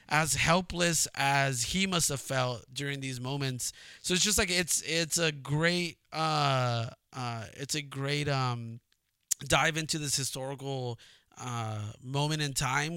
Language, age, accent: English, 20-39, American